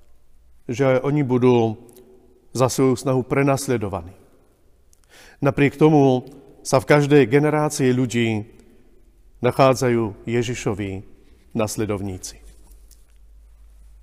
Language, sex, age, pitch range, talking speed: Slovak, male, 40-59, 95-130 Hz, 75 wpm